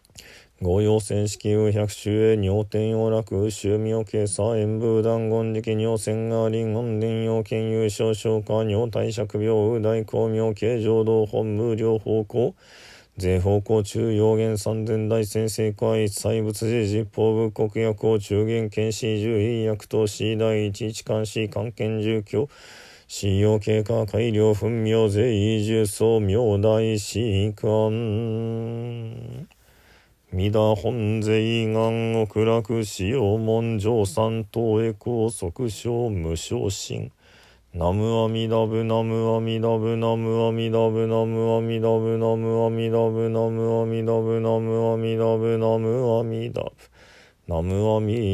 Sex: male